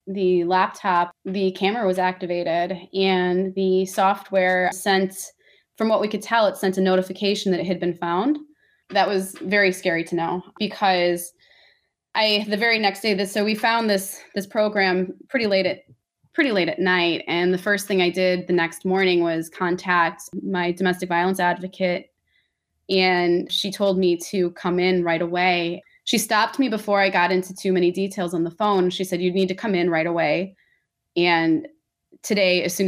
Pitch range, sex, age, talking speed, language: 180-200 Hz, female, 20-39, 185 wpm, English